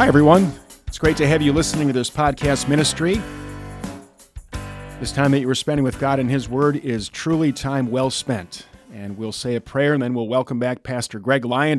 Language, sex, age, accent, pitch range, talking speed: English, male, 40-59, American, 120-145 Hz, 210 wpm